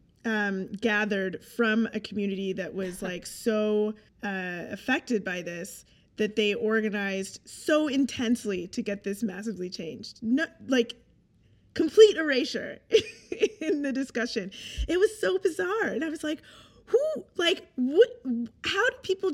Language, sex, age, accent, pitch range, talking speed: English, female, 20-39, American, 200-285 Hz, 135 wpm